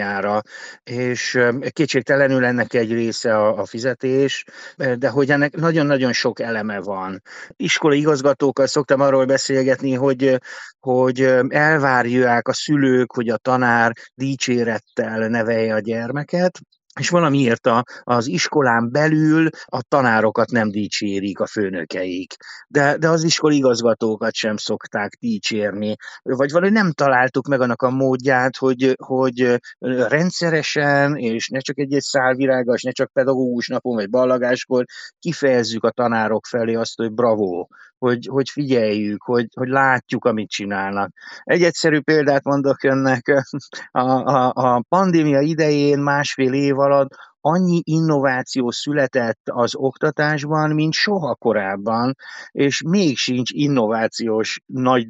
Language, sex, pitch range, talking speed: Hungarian, male, 120-145 Hz, 125 wpm